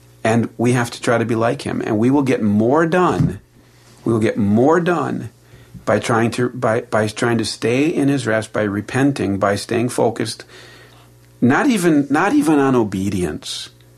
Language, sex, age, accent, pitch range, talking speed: English, male, 50-69, American, 90-120 Hz, 180 wpm